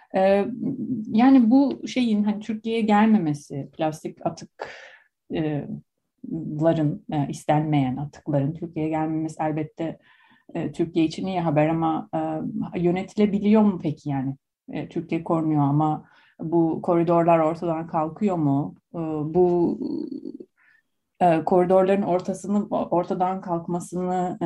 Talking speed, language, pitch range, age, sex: 85 wpm, Turkish, 150-200 Hz, 30-49, female